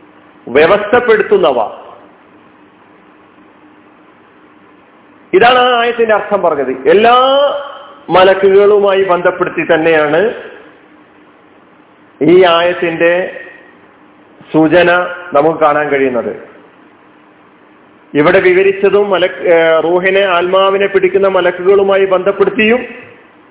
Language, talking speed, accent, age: Malayalam, 60 wpm, native, 40-59